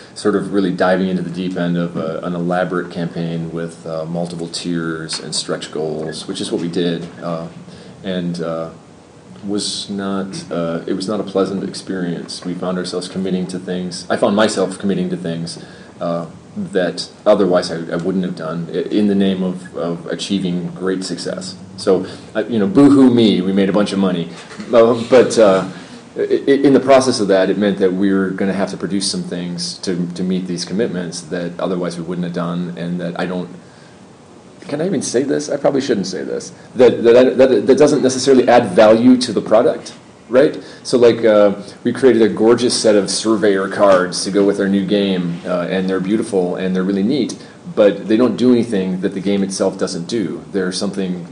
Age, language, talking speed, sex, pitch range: 30-49, English, 205 wpm, male, 85-100 Hz